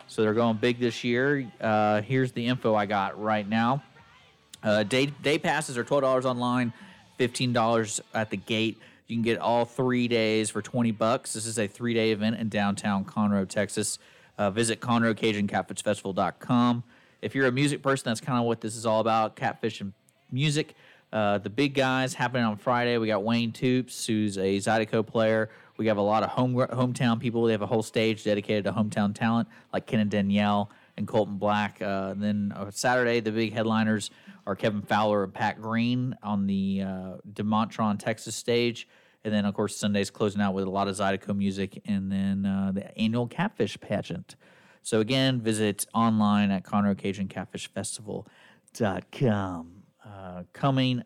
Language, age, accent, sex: English, 30-49, American, male